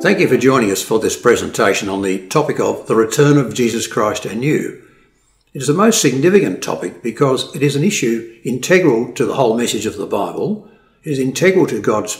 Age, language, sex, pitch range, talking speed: 60-79, English, male, 110-160 Hz, 210 wpm